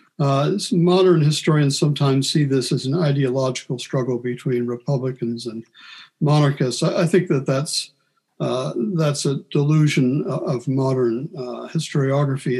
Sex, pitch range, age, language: male, 125-160 Hz, 60-79, English